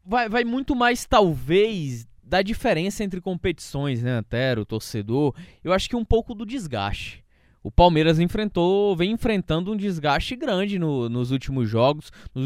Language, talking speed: Portuguese, 155 wpm